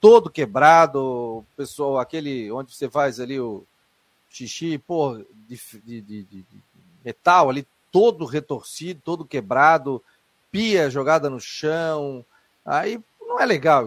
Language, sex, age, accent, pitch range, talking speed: Portuguese, male, 40-59, Brazilian, 130-190 Hz, 130 wpm